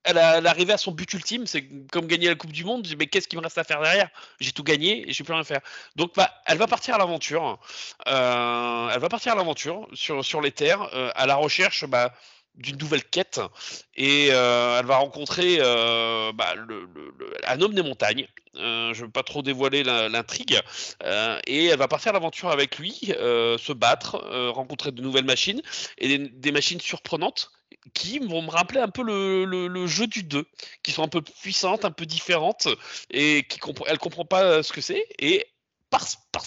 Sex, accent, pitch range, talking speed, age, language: male, French, 130-185 Hz, 215 wpm, 30-49, French